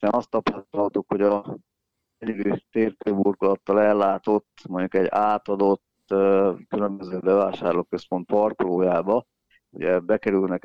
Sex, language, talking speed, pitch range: male, Hungarian, 80 wpm, 95-110 Hz